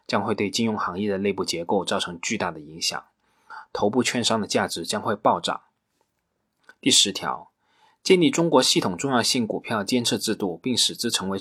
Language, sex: Chinese, male